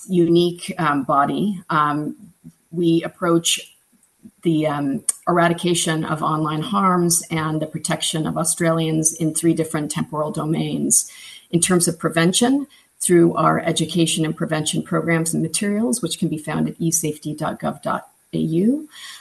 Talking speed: 125 wpm